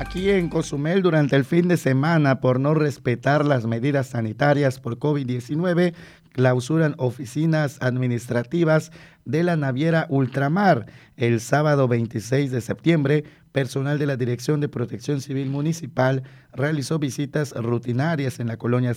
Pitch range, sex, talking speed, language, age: 125-155 Hz, male, 135 wpm, Spanish, 40-59